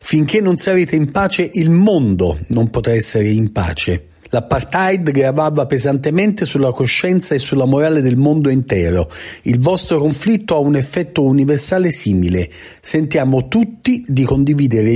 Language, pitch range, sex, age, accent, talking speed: Italian, 125-175 Hz, male, 40-59, native, 140 wpm